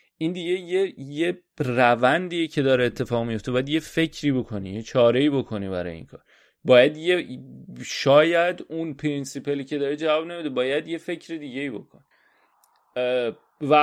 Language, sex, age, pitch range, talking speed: Persian, male, 30-49, 115-150 Hz, 155 wpm